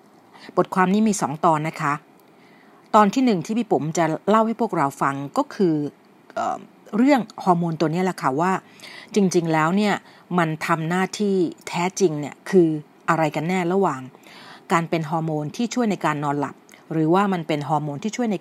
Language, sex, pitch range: Thai, female, 155-205 Hz